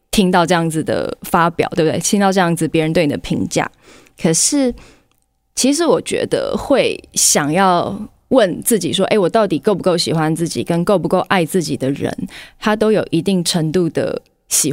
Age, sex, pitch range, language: 20-39, female, 160-205 Hz, Chinese